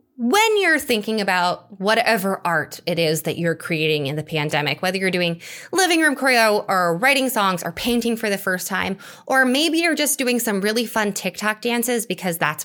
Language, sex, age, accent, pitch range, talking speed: English, female, 20-39, American, 185-295 Hz, 195 wpm